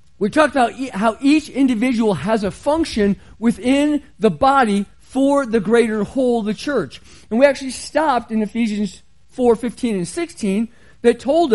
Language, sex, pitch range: English, male, 210-280 Hz